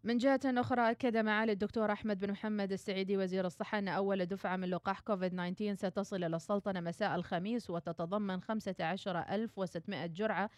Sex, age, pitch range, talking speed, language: female, 30-49, 170-210 Hz, 145 wpm, Arabic